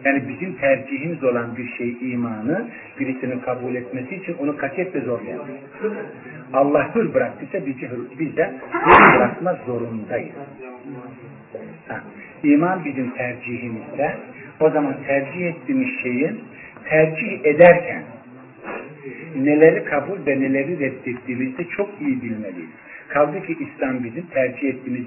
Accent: native